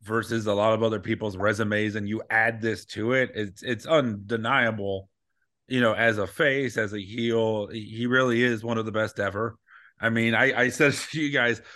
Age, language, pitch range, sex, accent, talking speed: 30-49, English, 110-145 Hz, male, American, 205 wpm